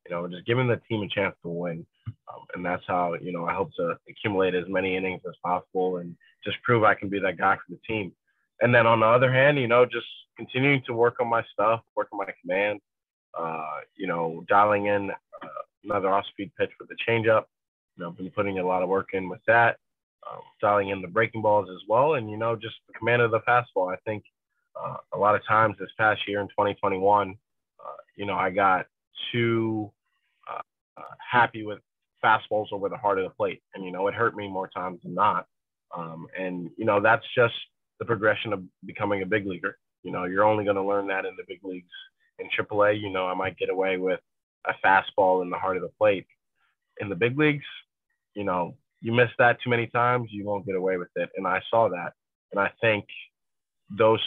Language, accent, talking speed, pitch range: English, American, 225 wpm, 95-120 Hz